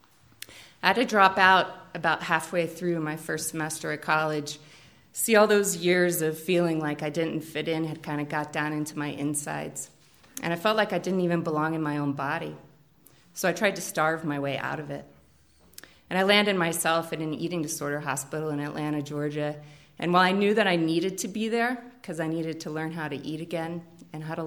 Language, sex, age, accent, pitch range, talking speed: English, female, 30-49, American, 150-175 Hz, 215 wpm